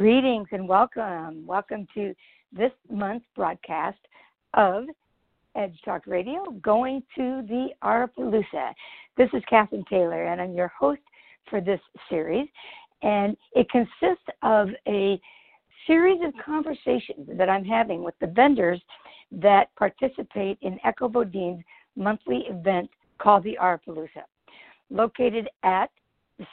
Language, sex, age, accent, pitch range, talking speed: English, female, 60-79, American, 190-260 Hz, 120 wpm